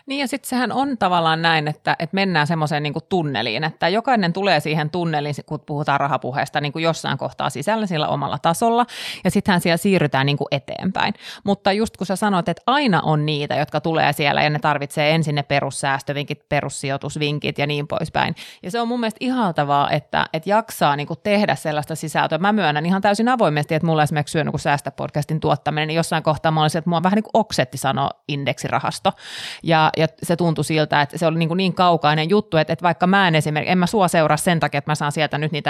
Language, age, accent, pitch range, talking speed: Finnish, 30-49, native, 150-190 Hz, 210 wpm